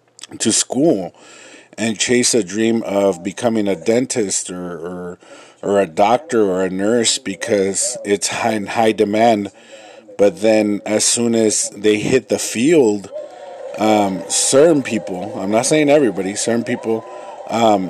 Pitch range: 105-130 Hz